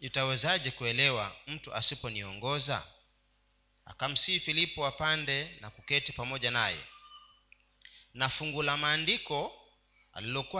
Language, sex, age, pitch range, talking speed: Swahili, male, 40-59, 120-150 Hz, 85 wpm